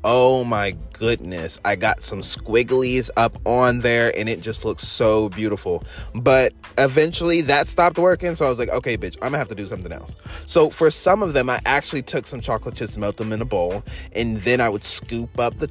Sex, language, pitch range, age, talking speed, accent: male, English, 105-130 Hz, 20-39, 220 wpm, American